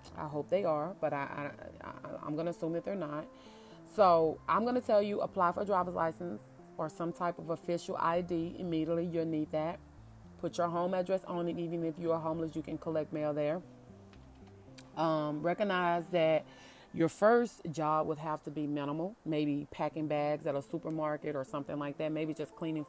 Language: English